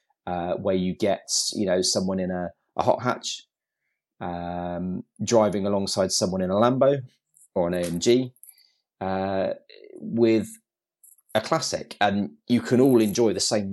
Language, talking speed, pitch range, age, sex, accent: English, 145 wpm, 95-125 Hz, 30-49, male, British